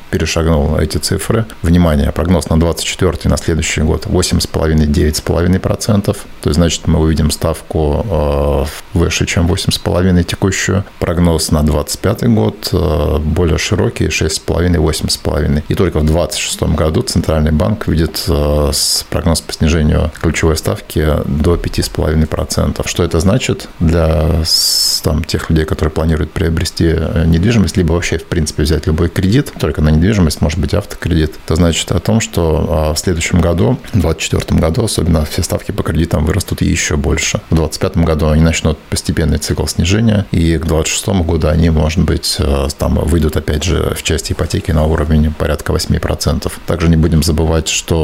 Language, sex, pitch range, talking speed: Russian, male, 75-90 Hz, 145 wpm